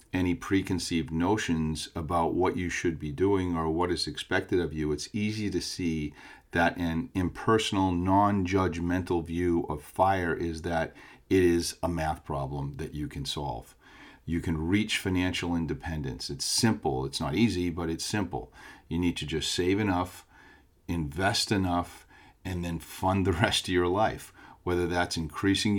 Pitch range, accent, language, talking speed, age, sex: 85-95 Hz, American, English, 160 wpm, 40-59, male